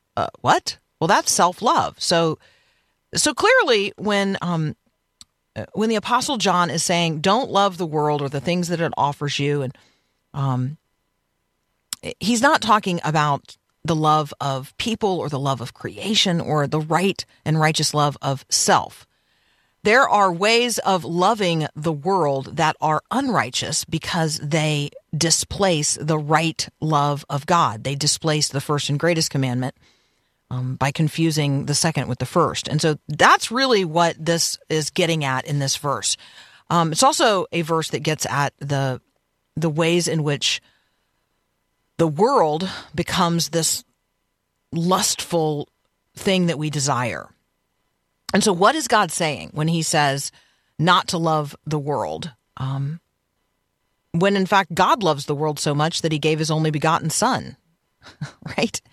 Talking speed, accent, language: 155 wpm, American, English